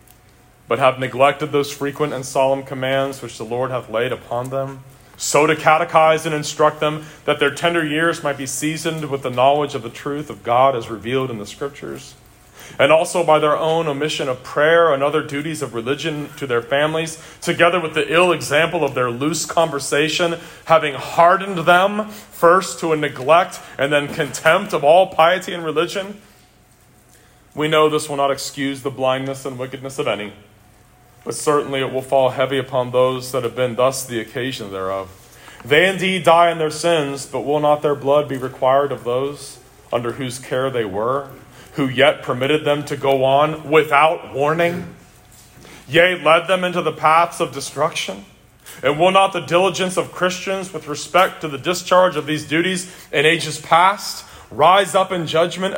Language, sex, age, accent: English, male, 30-49, American